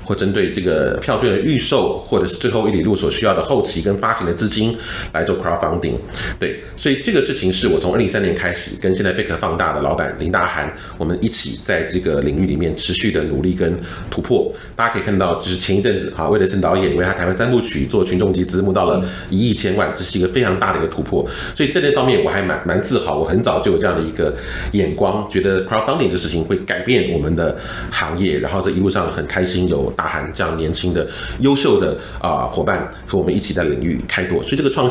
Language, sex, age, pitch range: Chinese, male, 30-49, 85-100 Hz